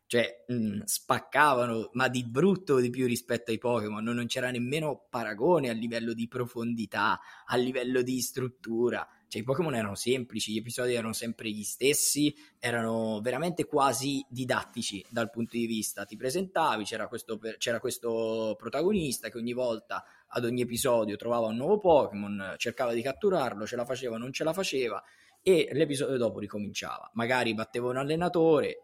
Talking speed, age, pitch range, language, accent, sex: 160 wpm, 20-39, 115-140 Hz, Italian, native, male